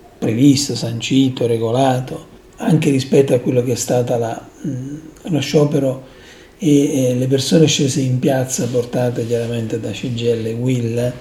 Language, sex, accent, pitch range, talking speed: Italian, male, native, 125-155 Hz, 135 wpm